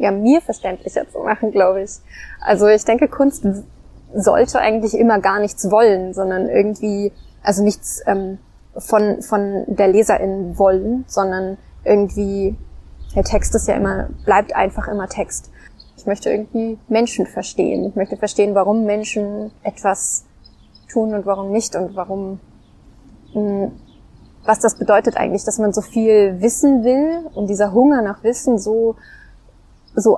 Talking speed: 145 wpm